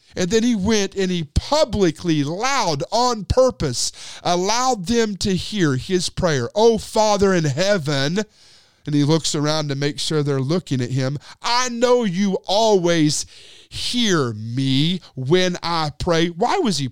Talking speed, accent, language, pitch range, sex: 155 wpm, American, English, 135-195 Hz, male